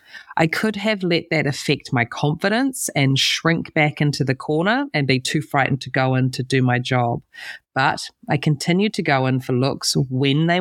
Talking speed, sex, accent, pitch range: 200 wpm, female, Australian, 135-185 Hz